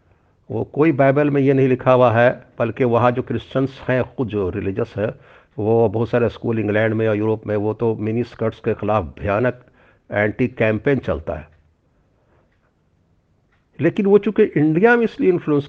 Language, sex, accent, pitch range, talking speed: Hindi, male, native, 105-135 Hz, 170 wpm